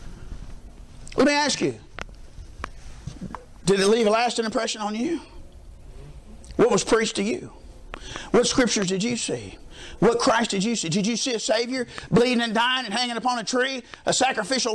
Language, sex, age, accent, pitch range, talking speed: English, male, 50-69, American, 180-260 Hz, 170 wpm